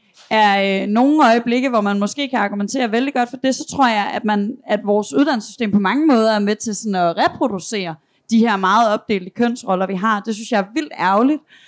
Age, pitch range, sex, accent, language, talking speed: 30-49, 210-255 Hz, female, native, Danish, 220 wpm